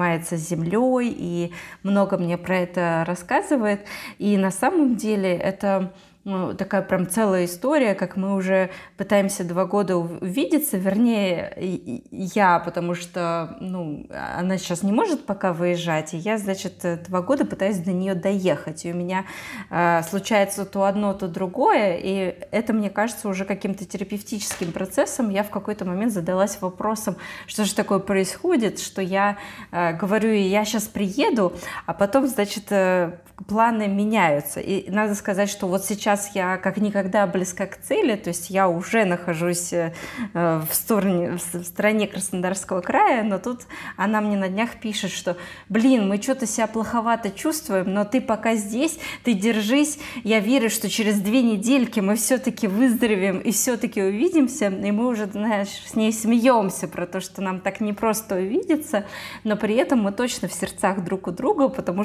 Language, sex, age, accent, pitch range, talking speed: Russian, female, 20-39, native, 185-220 Hz, 160 wpm